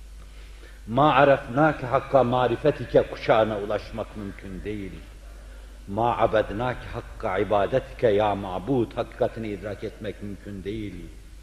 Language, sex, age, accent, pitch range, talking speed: Turkish, male, 60-79, native, 90-125 Hz, 100 wpm